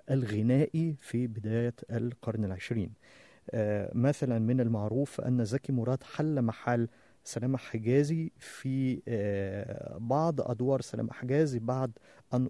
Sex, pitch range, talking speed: male, 115-145 Hz, 105 wpm